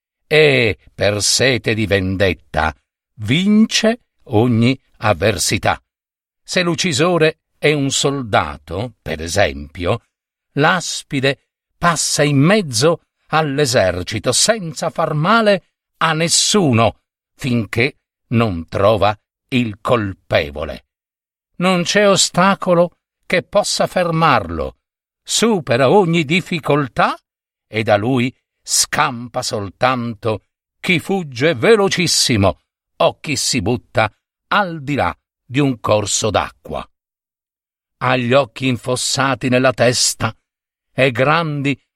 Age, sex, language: 50-69, male, Italian